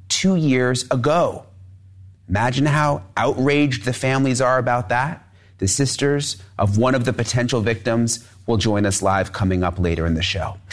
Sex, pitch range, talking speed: male, 105-140 Hz, 160 wpm